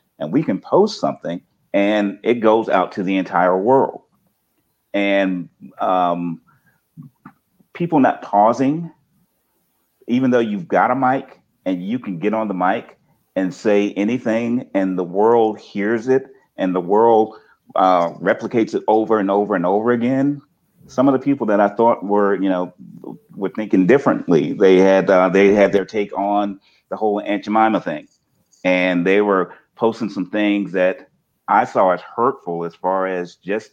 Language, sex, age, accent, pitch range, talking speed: English, male, 40-59, American, 95-130 Hz, 165 wpm